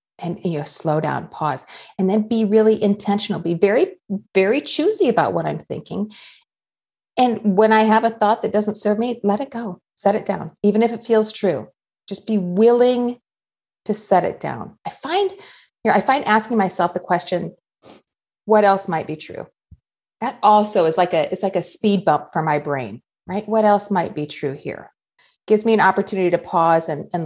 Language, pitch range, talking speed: English, 180-230 Hz, 200 wpm